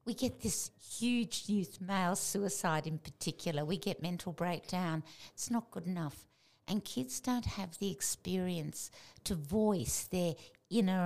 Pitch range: 160-210 Hz